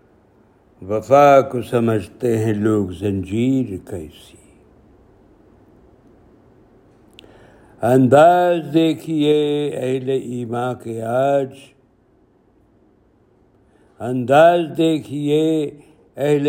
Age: 60-79